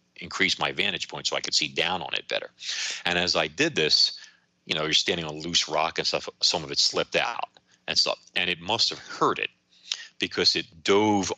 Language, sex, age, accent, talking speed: English, male, 40-59, American, 225 wpm